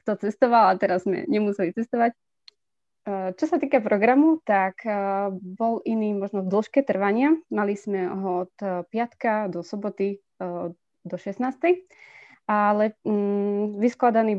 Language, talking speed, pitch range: Slovak, 120 wpm, 185-220 Hz